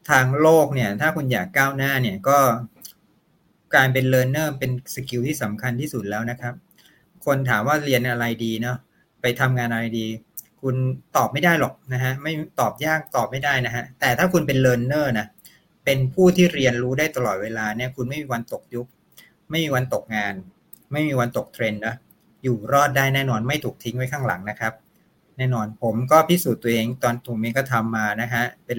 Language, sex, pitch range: Thai, male, 120-145 Hz